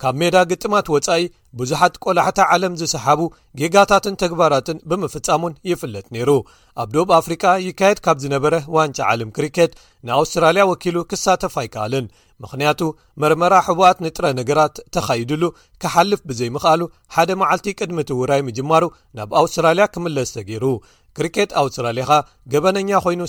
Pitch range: 135-180 Hz